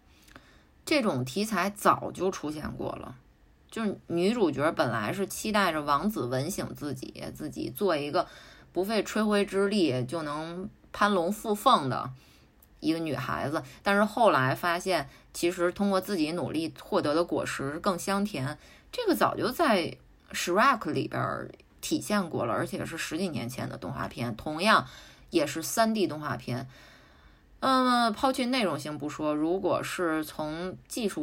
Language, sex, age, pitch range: Chinese, female, 20-39, 155-210 Hz